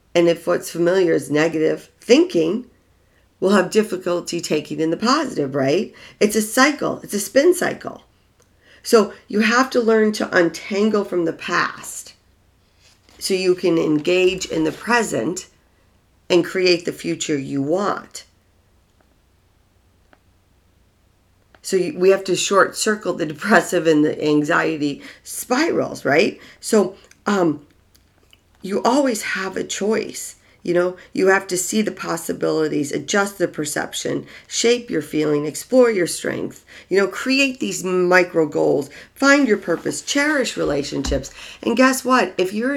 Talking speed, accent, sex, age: 140 wpm, American, female, 40-59